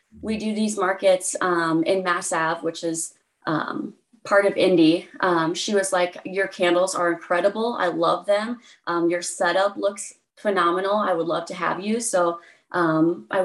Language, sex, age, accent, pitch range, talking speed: English, female, 30-49, American, 175-220 Hz, 175 wpm